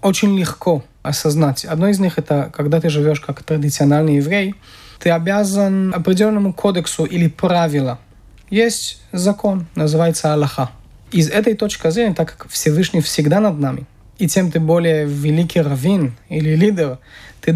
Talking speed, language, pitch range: 145 wpm, Russian, 150-185 Hz